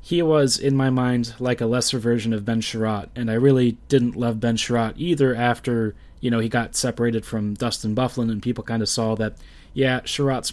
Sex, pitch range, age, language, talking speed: male, 115-140 Hz, 30-49, English, 210 wpm